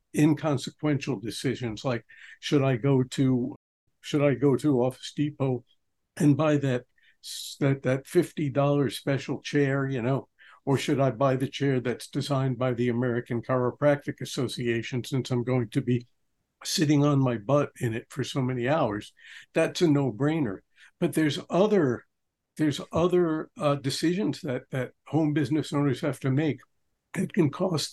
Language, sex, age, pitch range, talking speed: English, male, 60-79, 125-150 Hz, 155 wpm